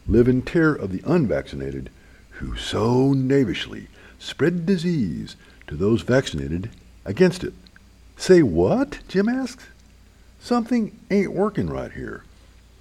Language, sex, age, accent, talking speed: English, male, 60-79, American, 115 wpm